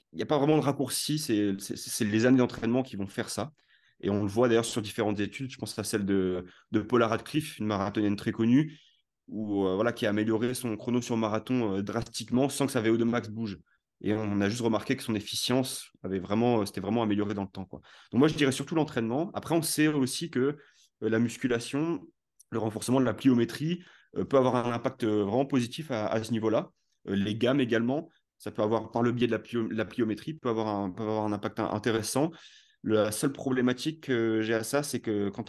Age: 30-49